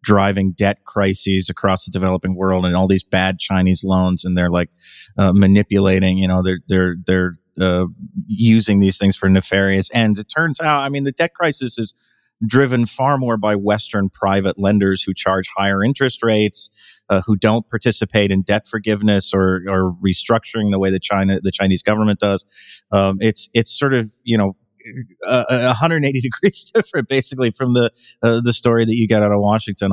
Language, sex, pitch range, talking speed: English, male, 95-115 Hz, 185 wpm